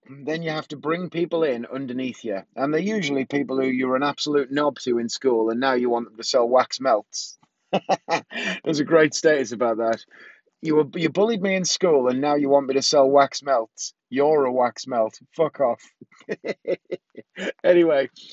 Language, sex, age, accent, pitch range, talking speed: English, male, 30-49, British, 125-160 Hz, 190 wpm